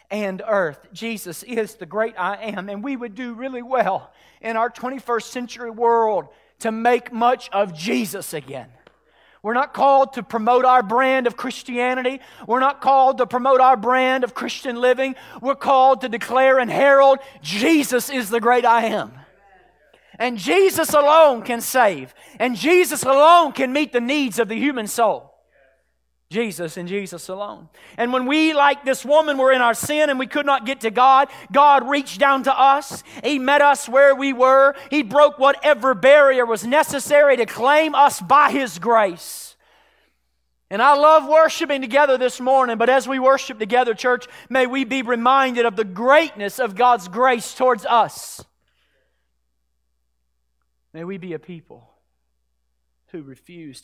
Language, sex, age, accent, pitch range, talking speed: English, male, 40-59, American, 200-270 Hz, 165 wpm